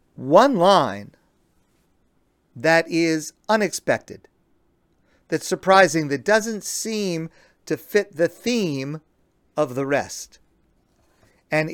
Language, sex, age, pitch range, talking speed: English, male, 50-69, 135-185 Hz, 90 wpm